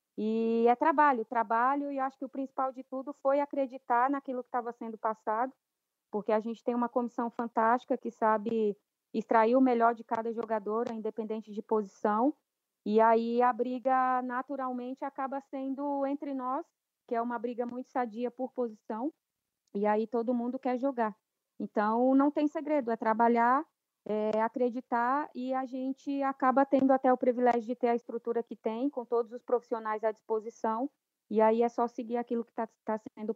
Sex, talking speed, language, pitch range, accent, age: female, 175 wpm, Portuguese, 225-260 Hz, Brazilian, 20-39